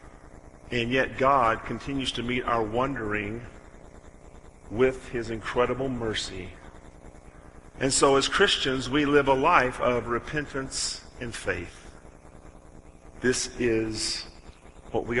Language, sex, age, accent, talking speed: English, male, 40-59, American, 110 wpm